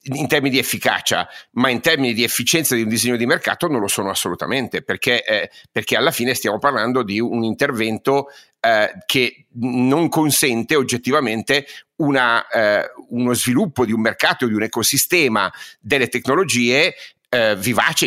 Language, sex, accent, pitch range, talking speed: Italian, male, native, 115-140 Hz, 155 wpm